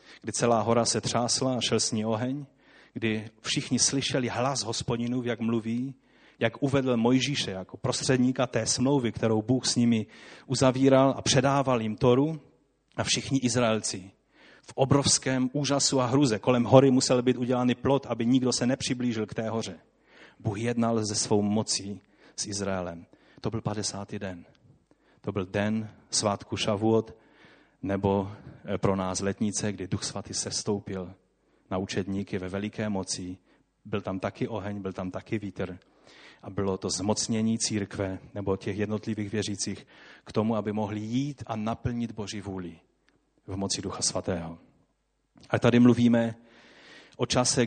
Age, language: 30-49, Czech